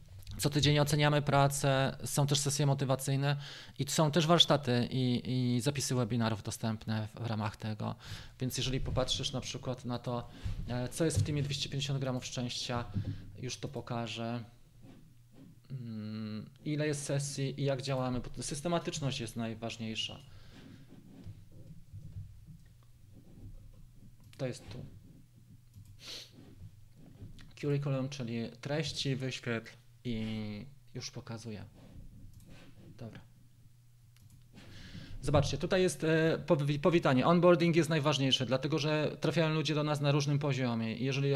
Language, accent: Polish, native